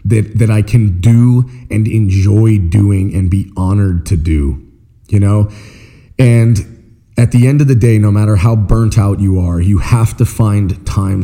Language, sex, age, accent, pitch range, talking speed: English, male, 30-49, American, 95-115 Hz, 180 wpm